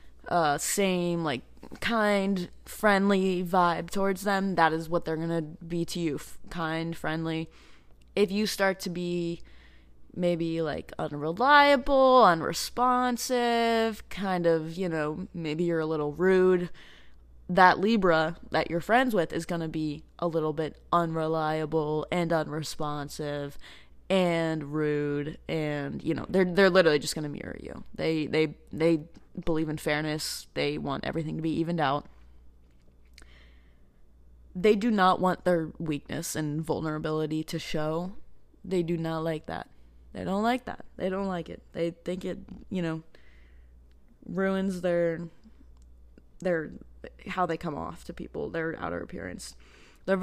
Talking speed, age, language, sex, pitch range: 140 wpm, 20-39, English, female, 150-180 Hz